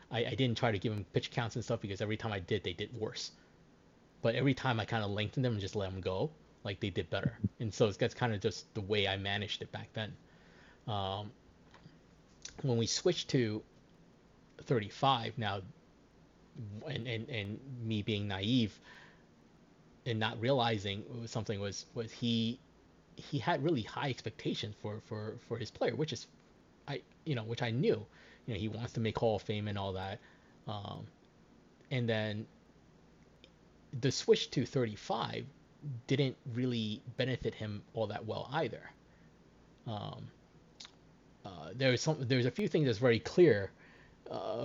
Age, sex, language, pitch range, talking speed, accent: 30-49, male, English, 105-130 Hz, 170 wpm, American